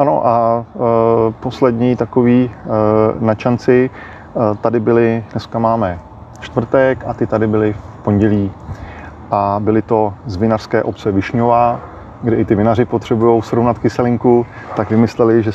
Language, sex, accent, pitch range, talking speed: Czech, male, native, 105-115 Hz, 140 wpm